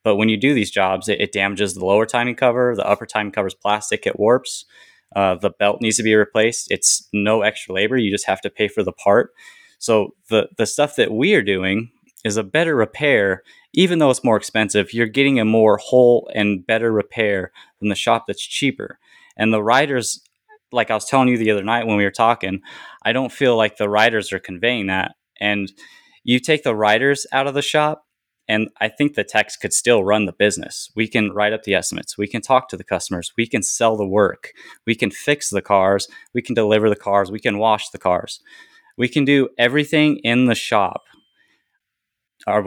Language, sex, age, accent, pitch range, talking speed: English, male, 20-39, American, 100-125 Hz, 215 wpm